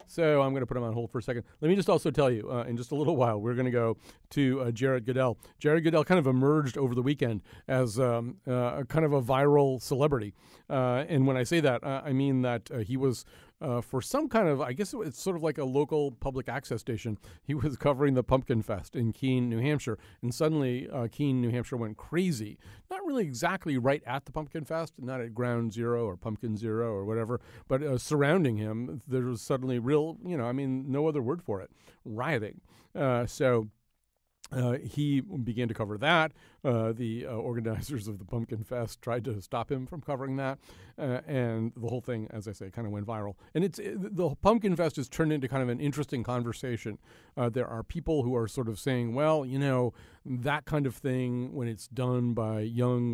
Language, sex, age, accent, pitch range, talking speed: English, male, 40-59, American, 115-145 Hz, 225 wpm